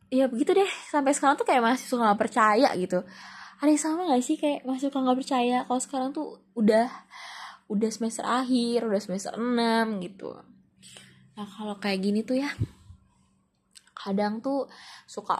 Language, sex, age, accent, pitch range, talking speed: Indonesian, female, 20-39, native, 195-260 Hz, 165 wpm